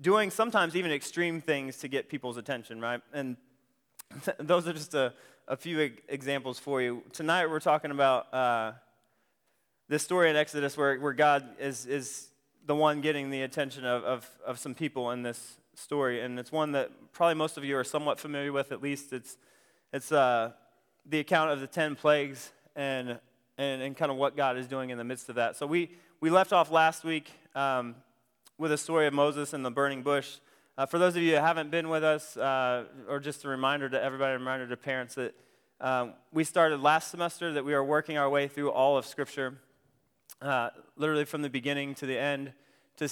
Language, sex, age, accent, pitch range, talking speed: English, male, 20-39, American, 130-155 Hz, 215 wpm